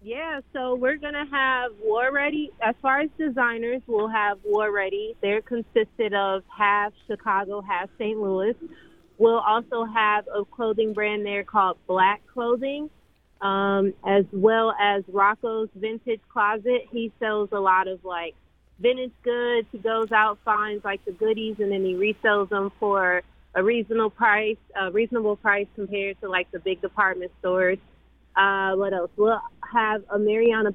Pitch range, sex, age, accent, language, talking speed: 190-225 Hz, female, 30-49, American, English, 160 wpm